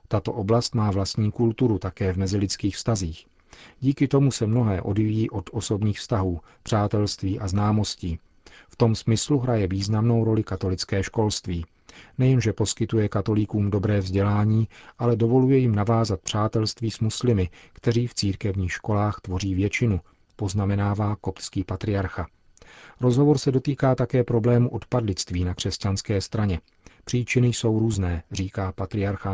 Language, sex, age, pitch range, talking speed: Czech, male, 40-59, 95-115 Hz, 130 wpm